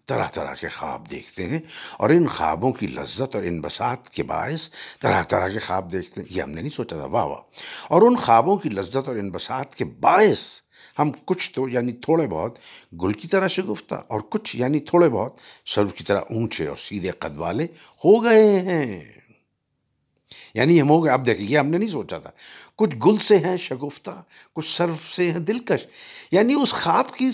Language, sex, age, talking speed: Urdu, male, 60-79, 200 wpm